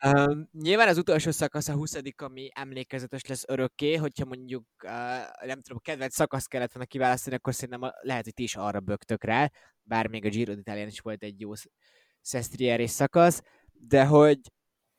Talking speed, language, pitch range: 170 wpm, Hungarian, 120-150 Hz